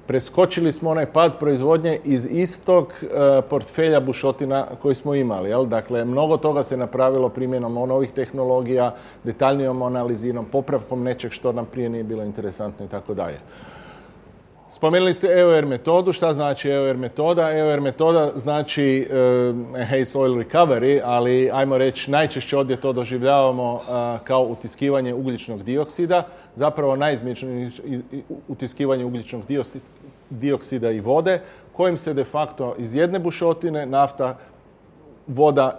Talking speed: 125 wpm